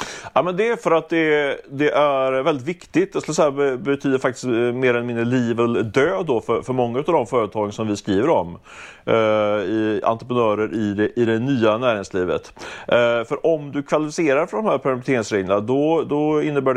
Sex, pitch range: male, 105-130 Hz